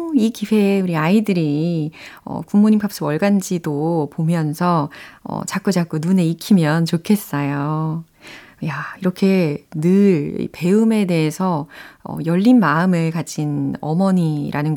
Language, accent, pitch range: Korean, native, 160-215 Hz